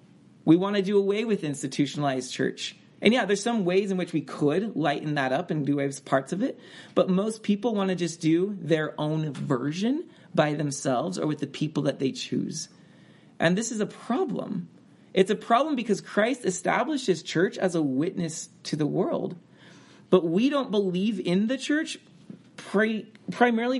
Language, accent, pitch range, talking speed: English, American, 160-210 Hz, 180 wpm